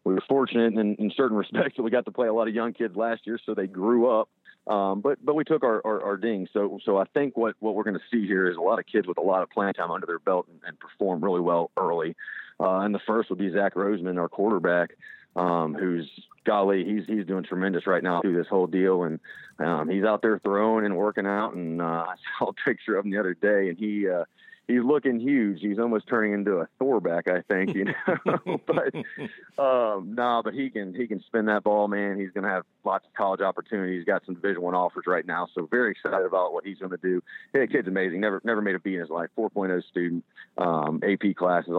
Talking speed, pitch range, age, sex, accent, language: 255 wpm, 90-110 Hz, 40-59, male, American, English